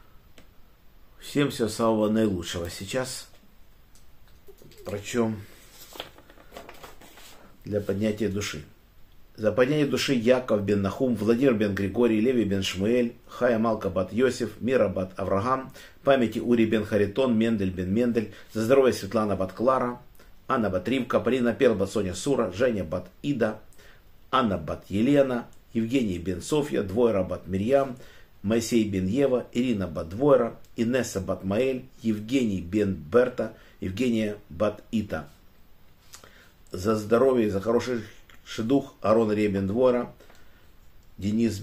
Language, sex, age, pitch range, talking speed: Russian, male, 50-69, 95-120 Hz, 115 wpm